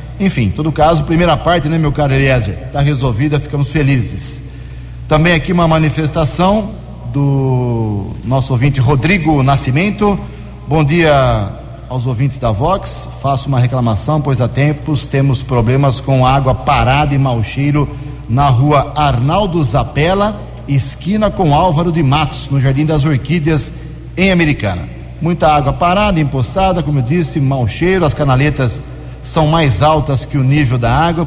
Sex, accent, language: male, Brazilian, Portuguese